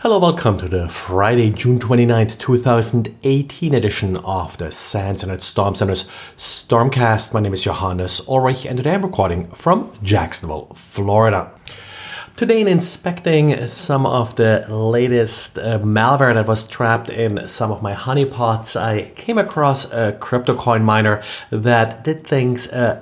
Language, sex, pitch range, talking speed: English, male, 110-140 Hz, 145 wpm